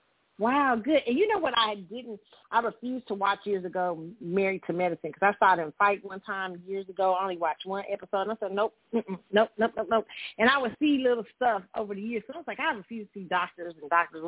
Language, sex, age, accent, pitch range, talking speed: English, female, 40-59, American, 180-230 Hz, 250 wpm